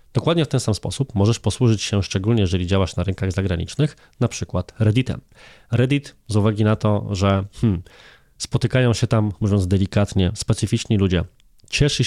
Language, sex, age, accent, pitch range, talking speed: Polish, male, 20-39, native, 95-120 Hz, 155 wpm